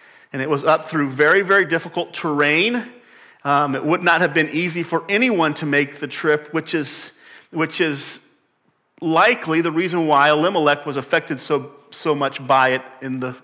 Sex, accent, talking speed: male, American, 180 wpm